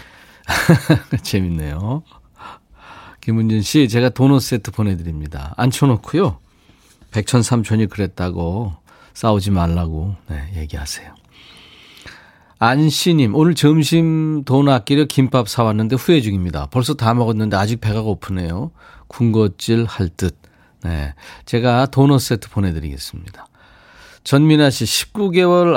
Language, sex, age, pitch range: Korean, male, 40-59, 95-130 Hz